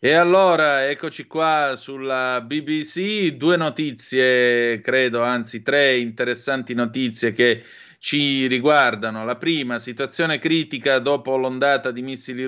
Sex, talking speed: male, 115 wpm